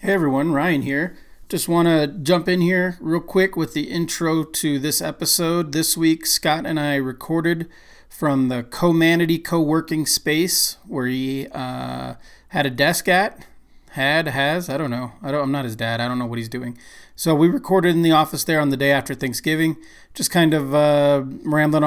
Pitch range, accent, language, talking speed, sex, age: 130-155 Hz, American, English, 195 wpm, male, 30-49